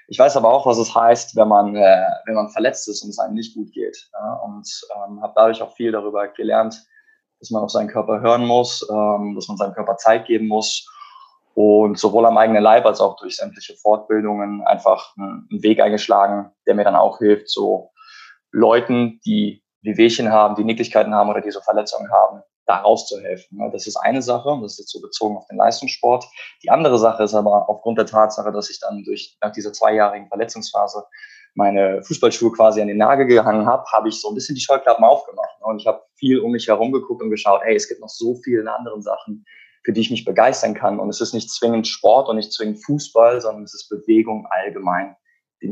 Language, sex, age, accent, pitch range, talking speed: German, male, 20-39, German, 105-135 Hz, 215 wpm